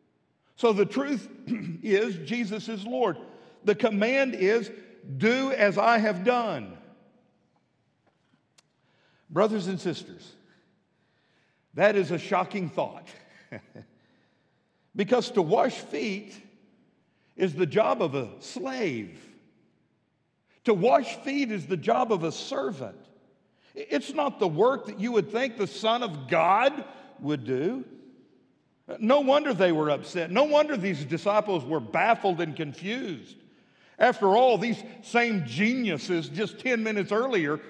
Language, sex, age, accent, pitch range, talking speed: English, male, 60-79, American, 185-230 Hz, 125 wpm